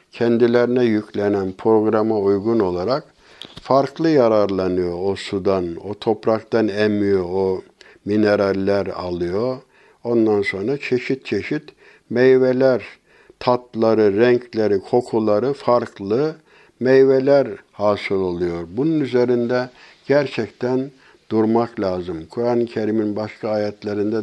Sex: male